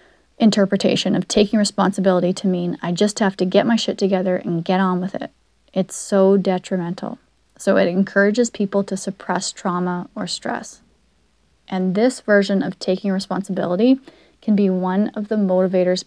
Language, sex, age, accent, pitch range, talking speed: English, female, 20-39, American, 185-220 Hz, 160 wpm